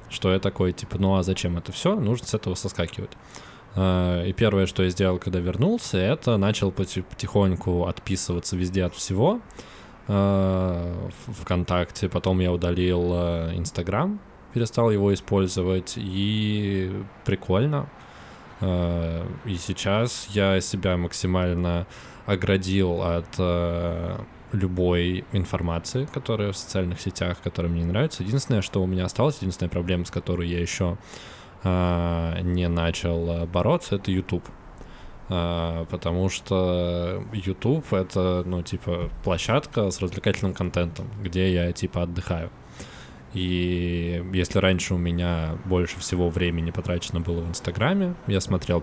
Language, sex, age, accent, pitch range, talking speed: Russian, male, 20-39, native, 85-100 Hz, 120 wpm